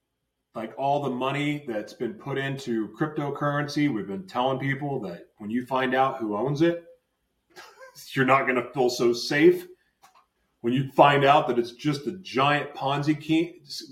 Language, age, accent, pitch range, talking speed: English, 30-49, American, 130-170 Hz, 170 wpm